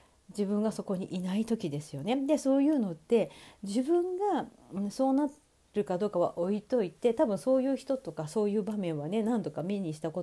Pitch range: 180-275 Hz